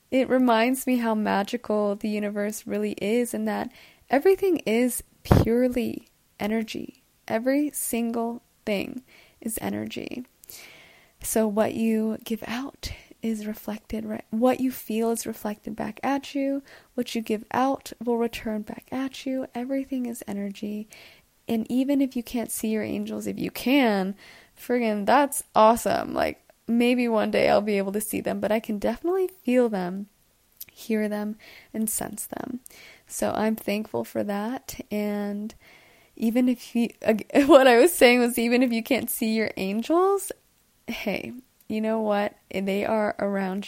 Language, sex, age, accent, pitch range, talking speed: English, female, 20-39, American, 215-265 Hz, 155 wpm